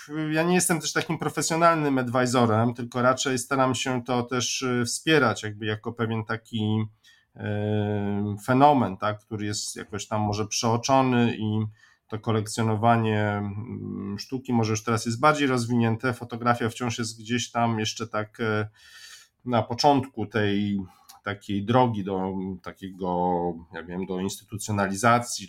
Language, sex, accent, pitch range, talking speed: Polish, male, native, 105-120 Hz, 125 wpm